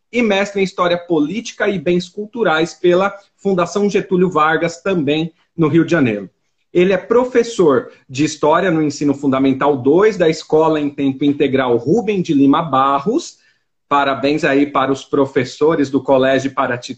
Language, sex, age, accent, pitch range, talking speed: Portuguese, male, 40-59, Brazilian, 165-220 Hz, 150 wpm